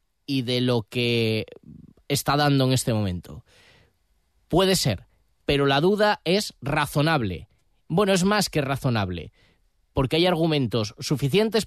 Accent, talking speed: Spanish, 130 wpm